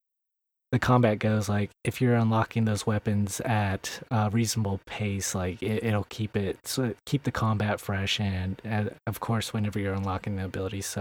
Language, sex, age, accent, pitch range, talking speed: English, male, 20-39, American, 100-125 Hz, 180 wpm